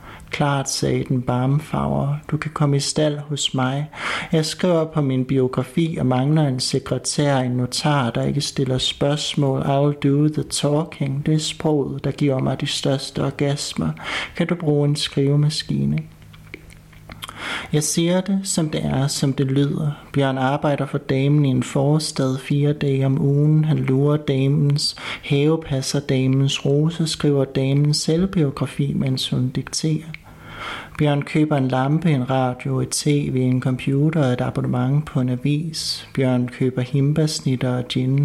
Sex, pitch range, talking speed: male, 130-150 Hz, 155 wpm